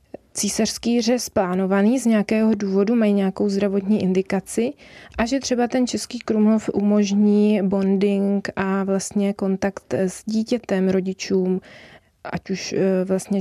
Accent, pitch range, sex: native, 200-230 Hz, female